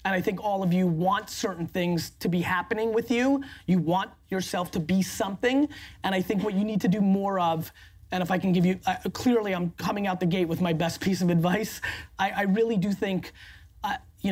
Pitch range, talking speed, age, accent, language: 170-195 Hz, 235 wpm, 30-49, American, English